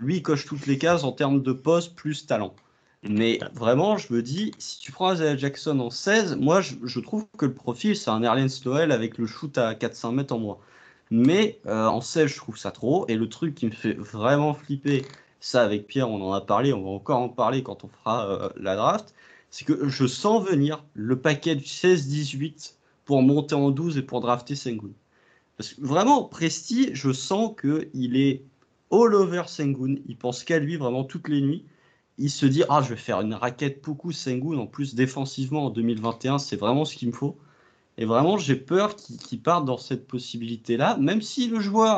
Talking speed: 215 wpm